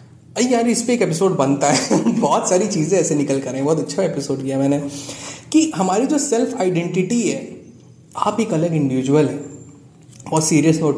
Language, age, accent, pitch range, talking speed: Hindi, 20-39, native, 140-180 Hz, 185 wpm